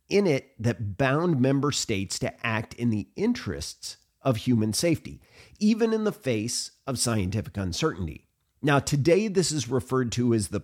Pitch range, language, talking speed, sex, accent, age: 105-145 Hz, English, 165 wpm, male, American, 40-59